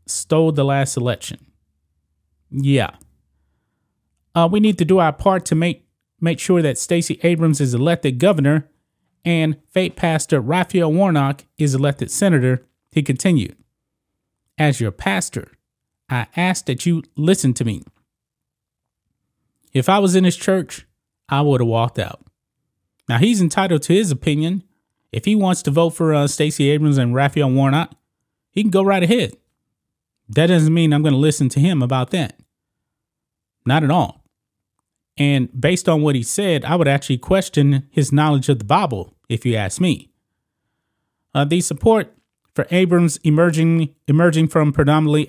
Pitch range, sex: 130-165 Hz, male